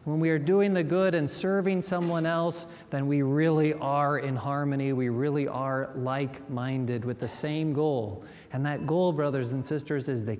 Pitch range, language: 140-185 Hz, English